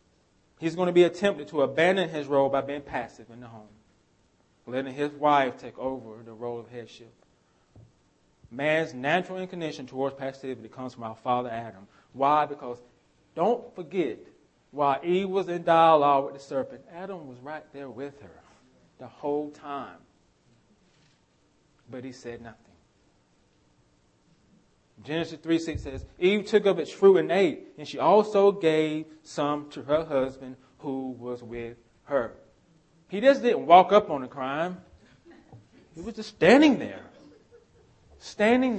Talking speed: 145 wpm